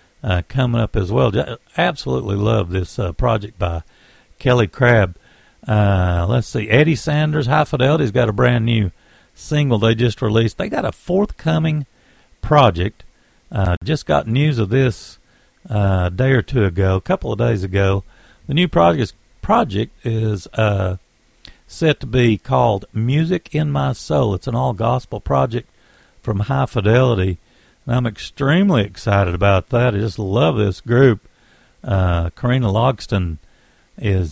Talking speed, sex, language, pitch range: 150 wpm, male, English, 95-130 Hz